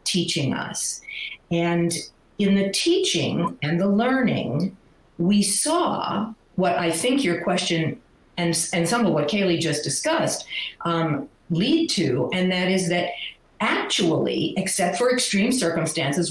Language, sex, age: English, female, 50-69